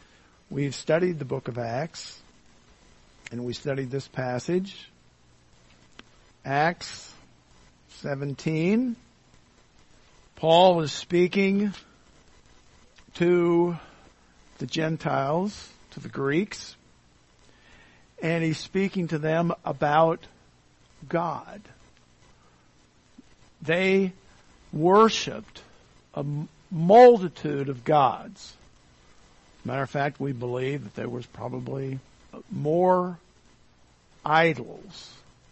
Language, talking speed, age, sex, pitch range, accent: English, 80 wpm, 50-69, male, 125-185 Hz, American